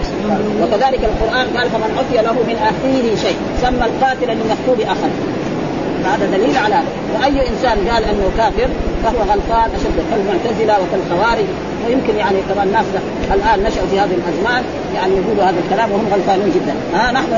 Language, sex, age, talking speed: Arabic, female, 40-59, 150 wpm